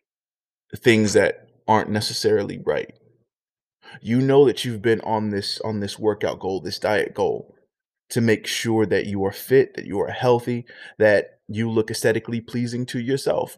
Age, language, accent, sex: 20-39, English, American, male